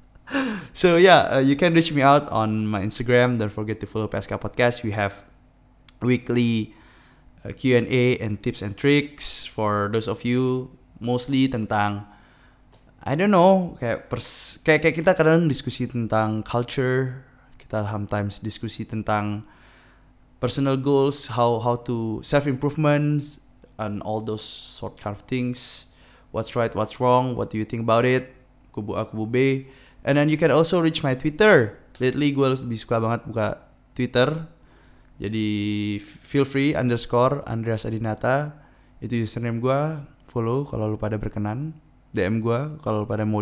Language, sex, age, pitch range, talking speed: Indonesian, male, 20-39, 110-140 Hz, 150 wpm